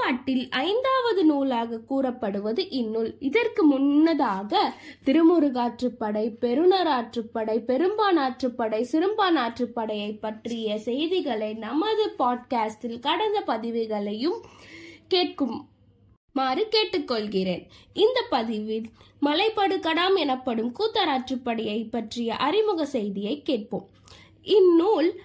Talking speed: 60 wpm